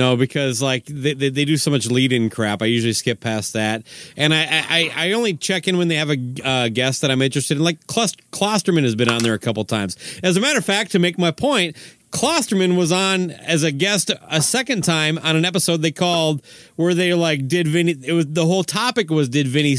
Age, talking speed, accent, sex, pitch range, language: 30-49, 240 wpm, American, male, 130-175 Hz, English